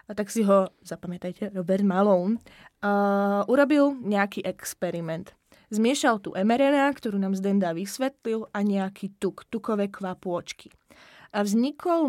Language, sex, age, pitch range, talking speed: Czech, female, 20-39, 195-235 Hz, 125 wpm